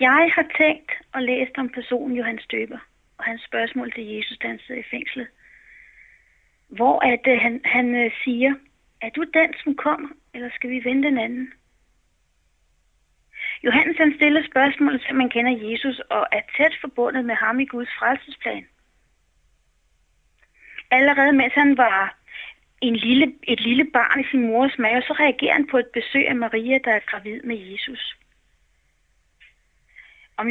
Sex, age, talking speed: female, 30-49, 155 wpm